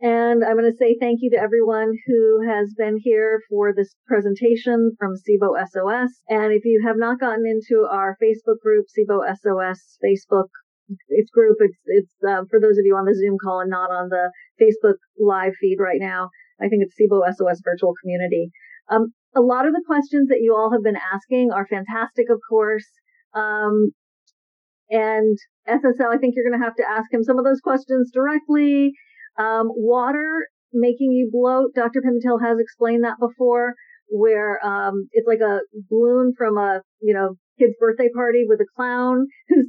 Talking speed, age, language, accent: 185 wpm, 40-59, English, American